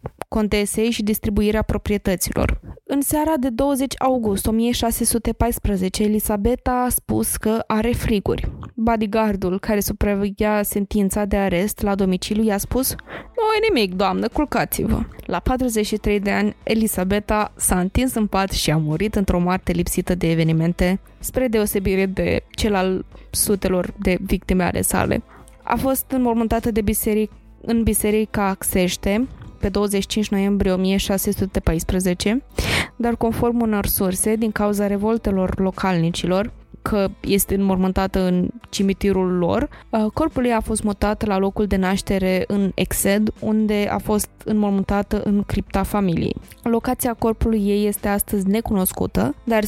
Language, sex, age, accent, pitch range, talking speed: Romanian, female, 20-39, native, 195-225 Hz, 135 wpm